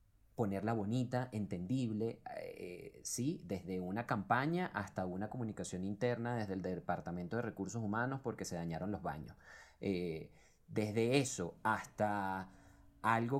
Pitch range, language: 95-120 Hz, Spanish